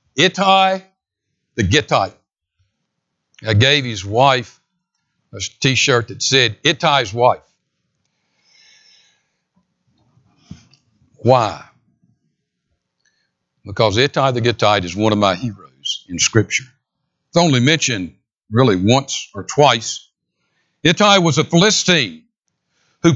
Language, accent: English, American